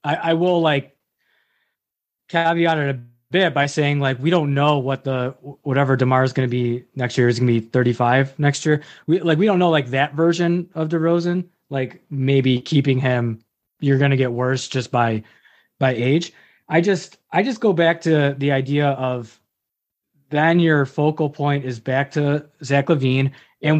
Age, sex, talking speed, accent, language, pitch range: 20-39, male, 190 wpm, American, English, 135-160 Hz